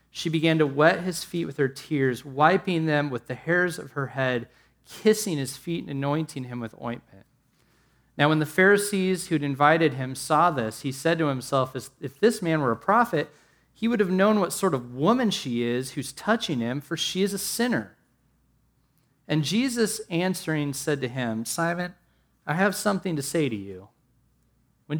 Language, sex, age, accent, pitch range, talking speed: English, male, 30-49, American, 120-165 Hz, 185 wpm